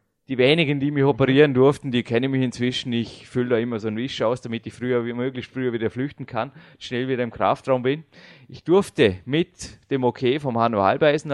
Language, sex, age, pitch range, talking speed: German, male, 30-49, 120-145 Hz, 210 wpm